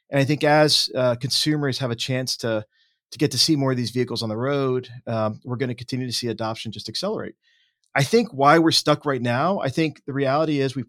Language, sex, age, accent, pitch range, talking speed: English, male, 40-59, American, 110-130 Hz, 235 wpm